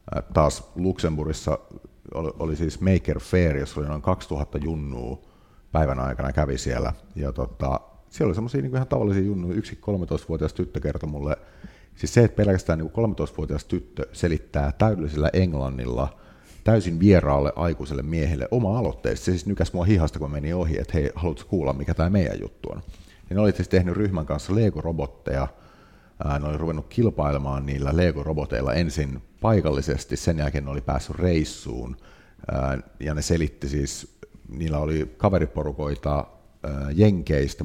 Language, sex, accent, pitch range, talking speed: Finnish, male, native, 70-90 Hz, 140 wpm